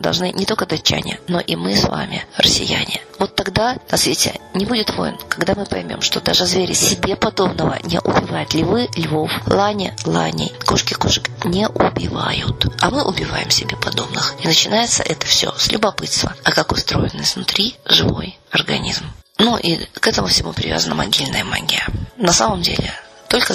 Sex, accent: female, native